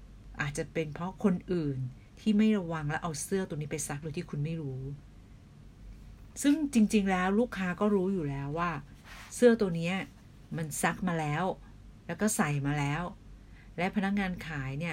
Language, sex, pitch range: Thai, female, 145-205 Hz